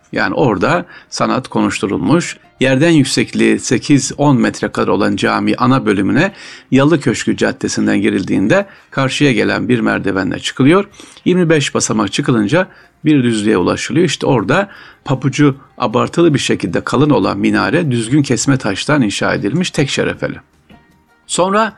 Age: 50-69